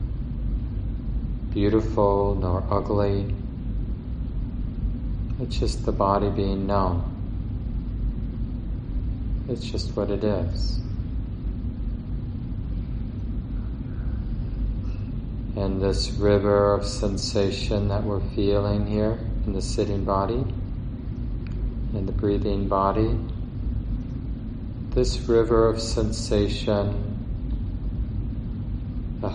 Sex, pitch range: male, 100-115 Hz